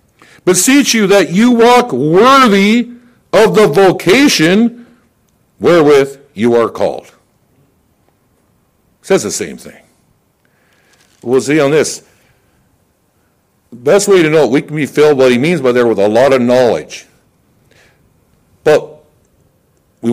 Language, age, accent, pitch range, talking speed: English, 60-79, American, 135-200 Hz, 130 wpm